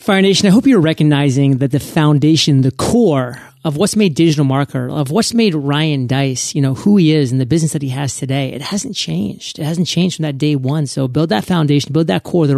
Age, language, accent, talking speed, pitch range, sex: 30-49, English, American, 245 wpm, 145-195 Hz, male